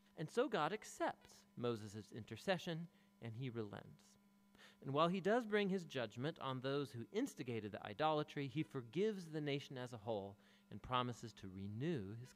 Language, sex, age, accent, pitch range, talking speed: English, male, 40-59, American, 115-185 Hz, 165 wpm